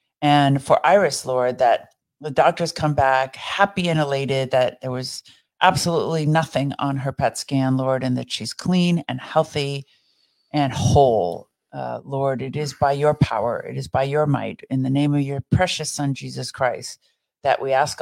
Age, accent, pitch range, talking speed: 50-69, American, 135-155 Hz, 180 wpm